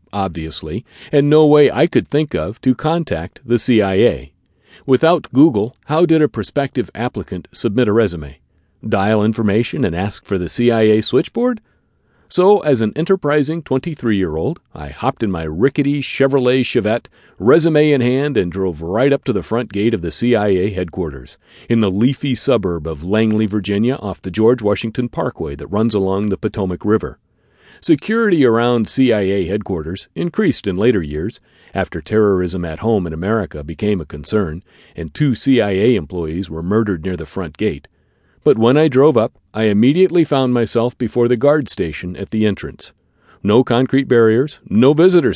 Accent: American